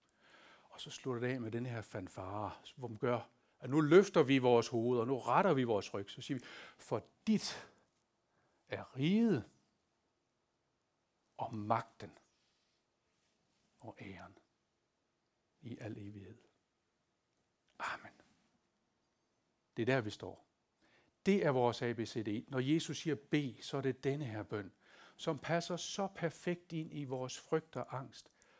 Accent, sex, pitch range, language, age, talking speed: native, male, 110-150 Hz, Danish, 60-79, 140 wpm